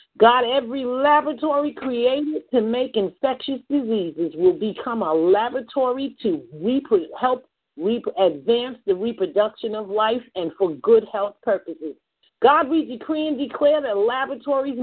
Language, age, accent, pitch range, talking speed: English, 50-69, American, 230-285 Hz, 135 wpm